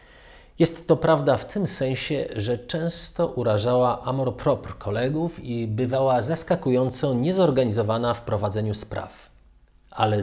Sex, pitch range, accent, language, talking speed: male, 110-145 Hz, native, Polish, 115 wpm